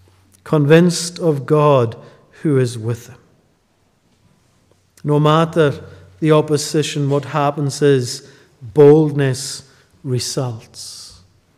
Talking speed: 85 wpm